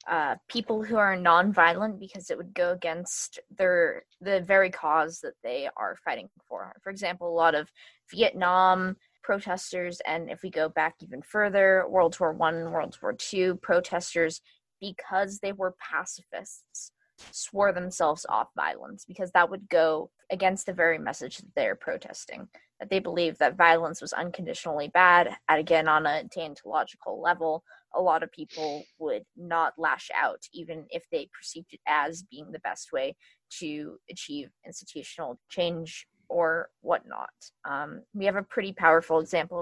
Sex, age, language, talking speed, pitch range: female, 20-39, English, 155 wpm, 165-195 Hz